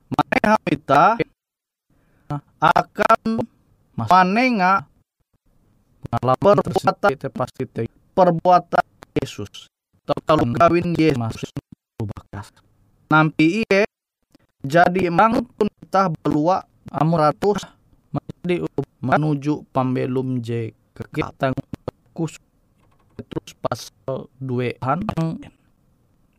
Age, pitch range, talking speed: 20-39, 125-170 Hz, 60 wpm